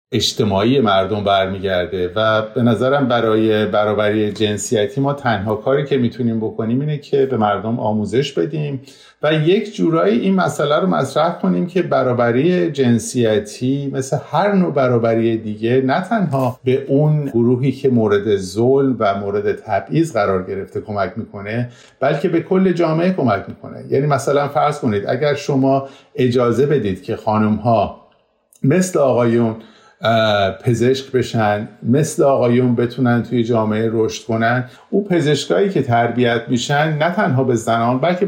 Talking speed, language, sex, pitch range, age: 140 wpm, Persian, male, 110-150 Hz, 50-69